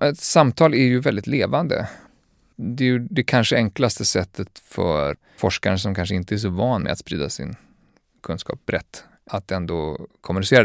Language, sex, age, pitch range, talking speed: Swedish, male, 30-49, 90-110 Hz, 170 wpm